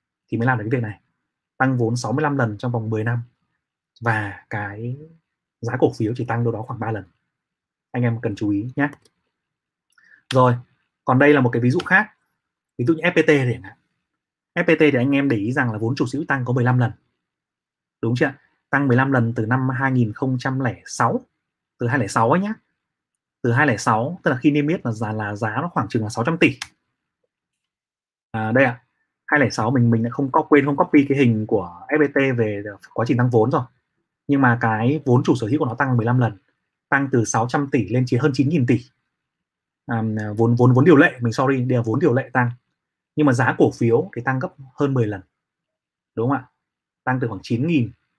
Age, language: 20-39, Vietnamese